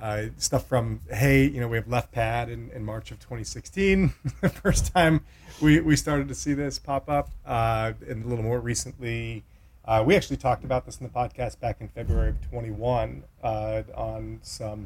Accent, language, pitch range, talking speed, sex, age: American, English, 110-135 Hz, 205 wpm, male, 30-49